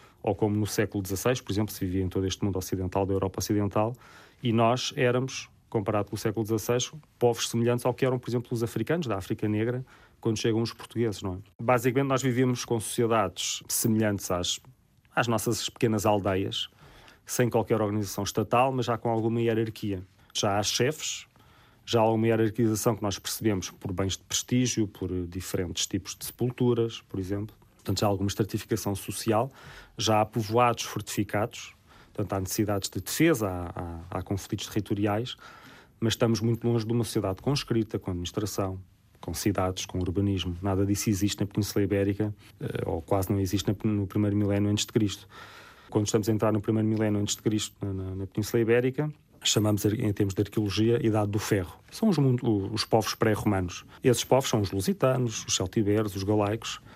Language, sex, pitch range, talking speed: Portuguese, male, 100-115 Hz, 175 wpm